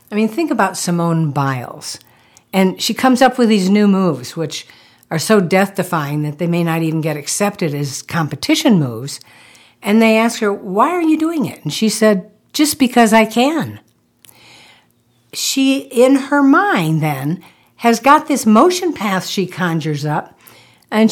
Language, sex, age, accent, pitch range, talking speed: English, female, 60-79, American, 160-245 Hz, 165 wpm